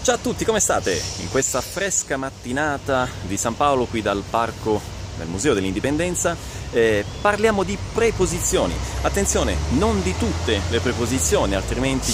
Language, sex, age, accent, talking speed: Italian, male, 30-49, native, 140 wpm